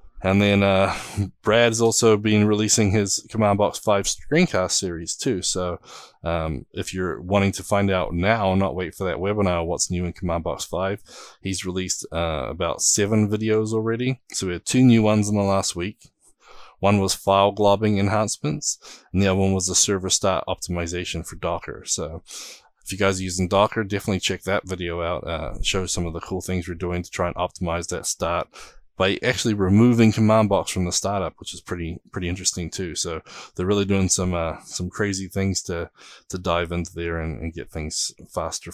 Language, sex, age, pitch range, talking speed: English, male, 20-39, 90-105 Hz, 195 wpm